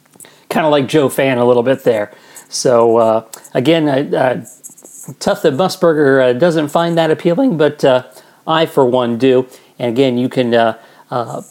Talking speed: 175 wpm